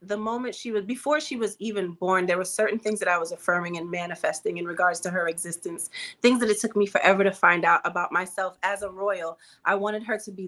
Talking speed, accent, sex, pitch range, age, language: 245 wpm, American, female, 185-215 Hz, 30-49, English